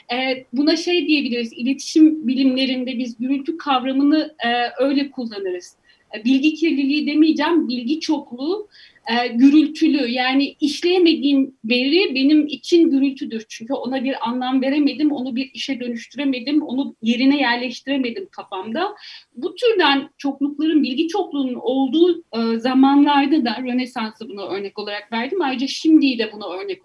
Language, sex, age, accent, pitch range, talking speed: Turkish, female, 40-59, native, 245-310 Hz, 120 wpm